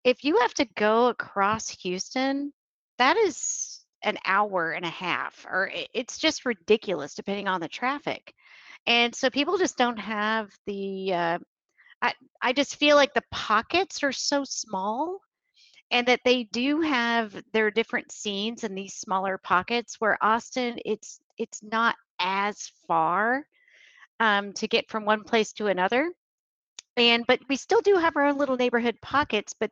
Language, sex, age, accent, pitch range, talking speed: English, female, 40-59, American, 195-245 Hz, 160 wpm